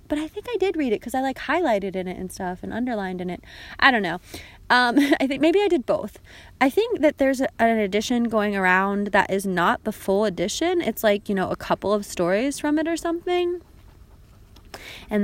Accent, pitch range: American, 205-270 Hz